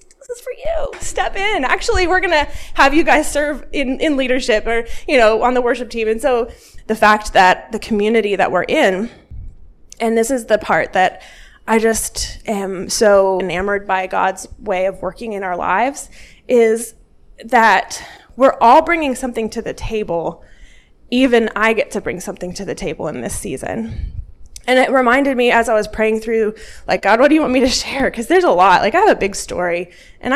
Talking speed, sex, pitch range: 205 wpm, female, 195-260 Hz